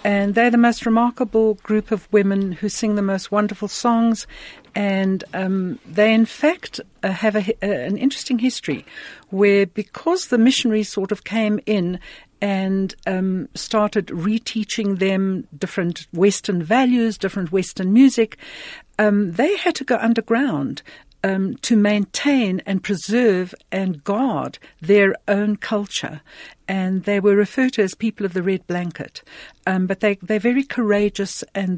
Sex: female